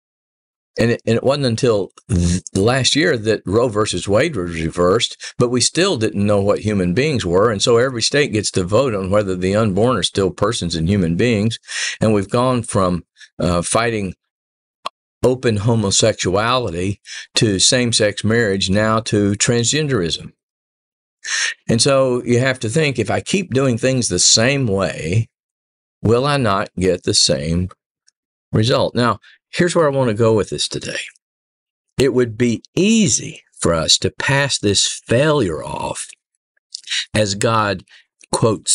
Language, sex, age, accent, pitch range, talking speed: English, male, 50-69, American, 95-125 Hz, 150 wpm